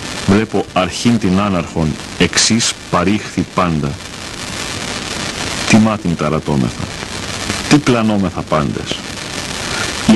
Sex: male